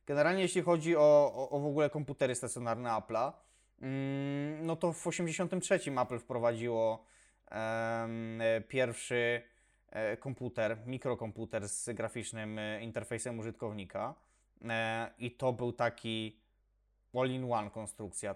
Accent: native